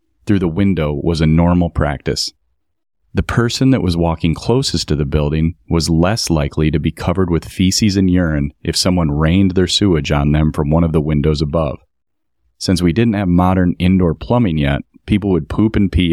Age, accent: 30-49, American